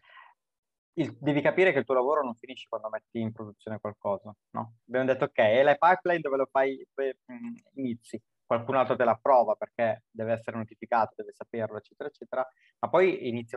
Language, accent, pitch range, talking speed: Italian, native, 115-140 Hz, 180 wpm